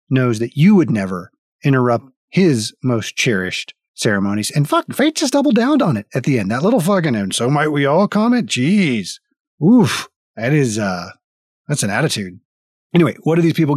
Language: English